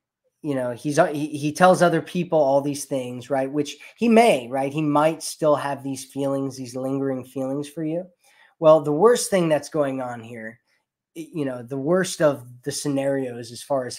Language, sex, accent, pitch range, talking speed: English, male, American, 135-160 Hz, 190 wpm